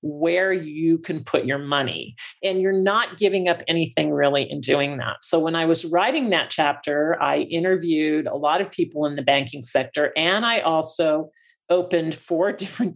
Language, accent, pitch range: English, American, 150-180 Hz